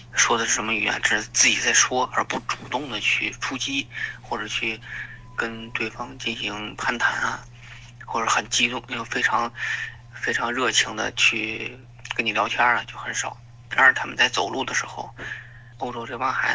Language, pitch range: Chinese, 115-125 Hz